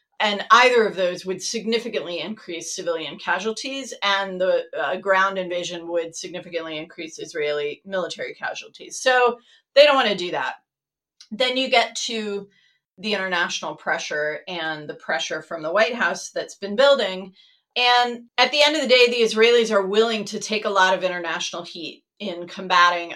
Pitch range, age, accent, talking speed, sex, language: 185-245 Hz, 30-49, American, 165 wpm, female, English